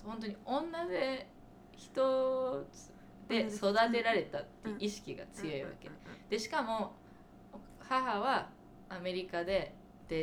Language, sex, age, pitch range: Japanese, female, 20-39, 145-215 Hz